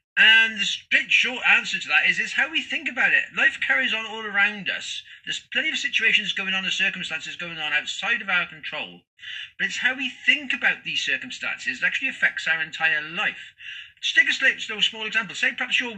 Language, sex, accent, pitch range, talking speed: English, male, British, 205-275 Hz, 220 wpm